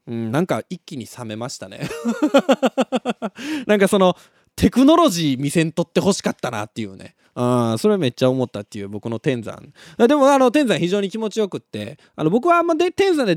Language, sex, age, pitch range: Japanese, male, 20-39, 140-230 Hz